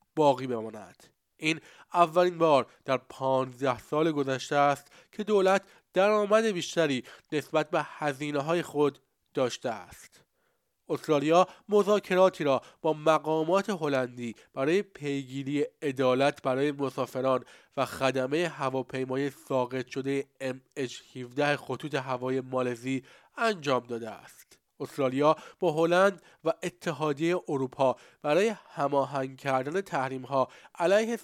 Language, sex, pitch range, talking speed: Persian, male, 130-165 Hz, 110 wpm